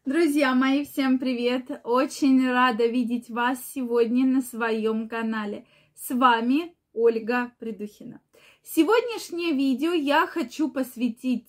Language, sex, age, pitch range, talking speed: Russian, female, 20-39, 230-295 Hz, 110 wpm